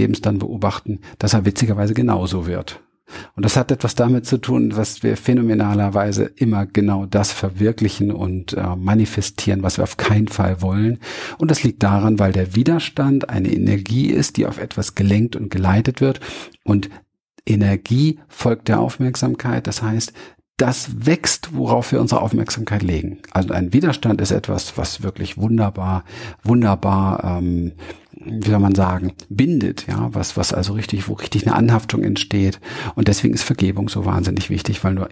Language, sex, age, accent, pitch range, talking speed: German, male, 50-69, German, 95-115 Hz, 165 wpm